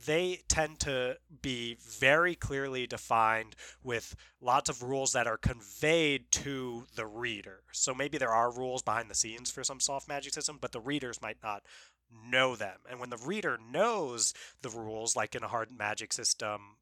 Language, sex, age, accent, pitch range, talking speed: English, male, 20-39, American, 115-145 Hz, 180 wpm